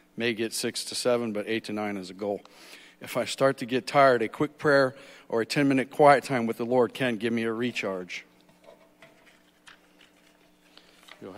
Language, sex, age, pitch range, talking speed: English, male, 50-69, 100-130 Hz, 185 wpm